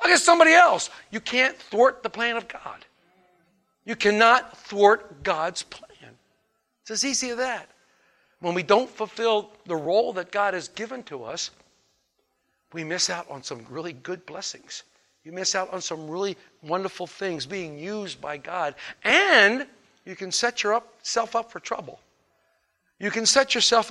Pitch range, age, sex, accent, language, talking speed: 200-265 Hz, 60-79, male, American, English, 165 wpm